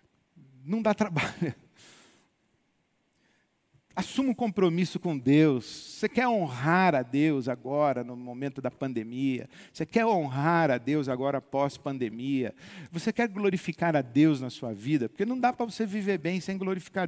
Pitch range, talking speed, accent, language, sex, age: 140-185 Hz, 150 wpm, Brazilian, Portuguese, male, 50-69